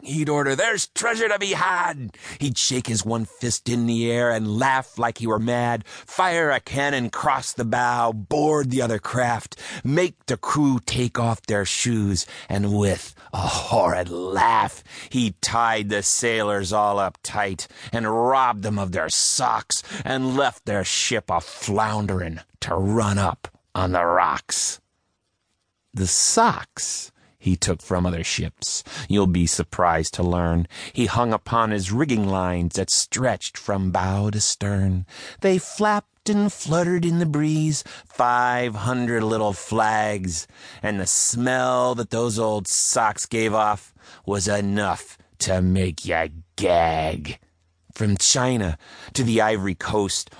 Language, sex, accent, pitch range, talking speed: English, male, American, 95-125 Hz, 145 wpm